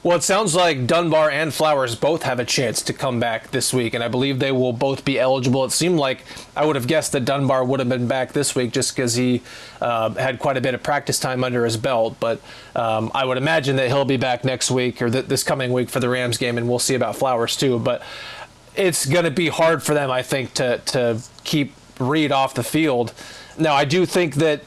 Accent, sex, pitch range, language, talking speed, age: American, male, 125-150 Hz, English, 245 wpm, 30-49